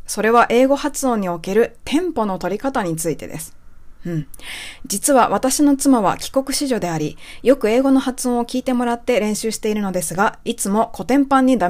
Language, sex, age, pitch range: Japanese, female, 20-39, 190-250 Hz